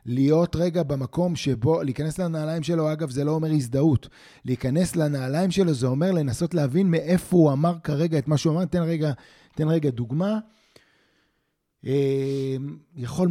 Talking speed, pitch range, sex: 150 wpm, 130-175 Hz, male